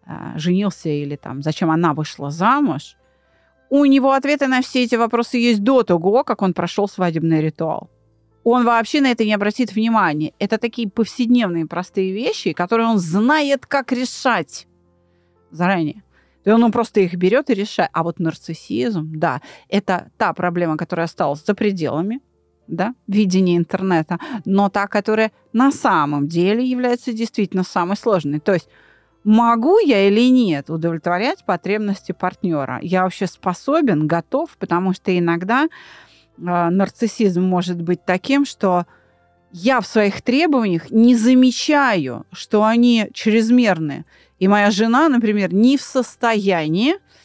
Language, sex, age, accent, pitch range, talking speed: Russian, female, 30-49, native, 170-235 Hz, 135 wpm